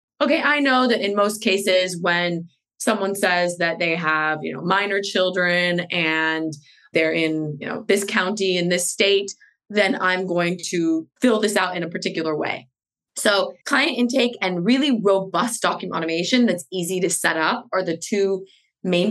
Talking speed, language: 175 wpm, English